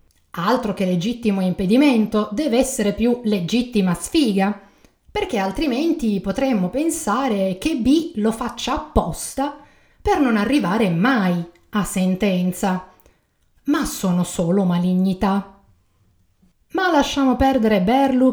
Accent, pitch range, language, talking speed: native, 200-275 Hz, Italian, 105 wpm